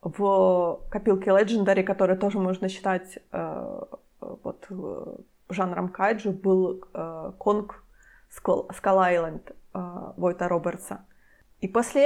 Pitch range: 190-225 Hz